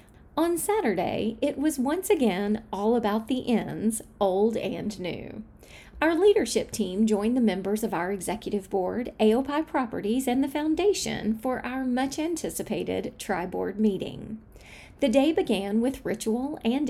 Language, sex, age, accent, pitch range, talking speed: English, female, 40-59, American, 220-290 Hz, 140 wpm